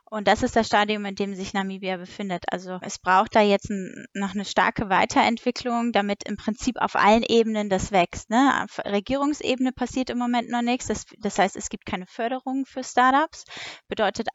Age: 20-39